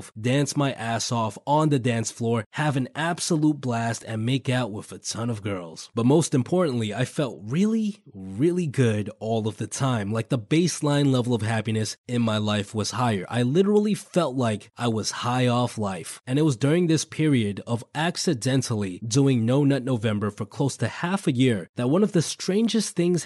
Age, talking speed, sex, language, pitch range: 20-39, 195 wpm, male, English, 115-160 Hz